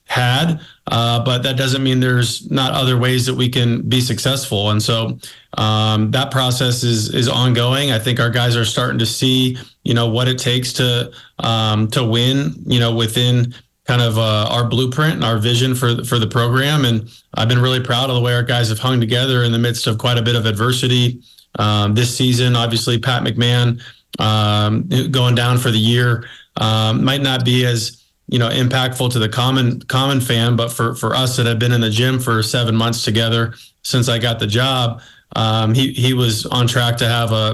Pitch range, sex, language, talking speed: 115-130 Hz, male, English, 210 wpm